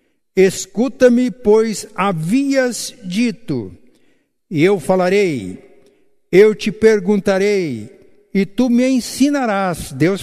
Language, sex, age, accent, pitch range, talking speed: Portuguese, male, 60-79, Brazilian, 170-215 Hz, 90 wpm